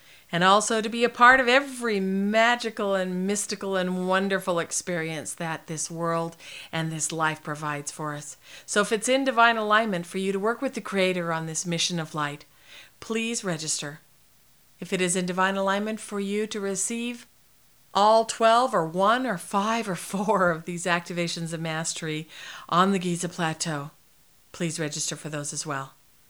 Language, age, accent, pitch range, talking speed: English, 50-69, American, 155-205 Hz, 175 wpm